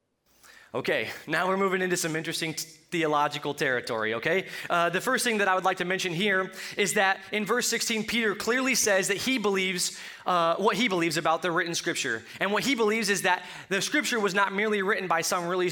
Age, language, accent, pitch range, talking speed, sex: 20-39, English, American, 165-210 Hz, 210 wpm, male